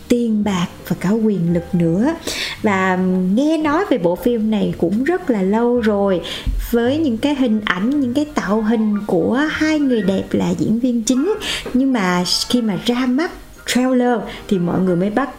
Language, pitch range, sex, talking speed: Vietnamese, 195-260 Hz, female, 185 wpm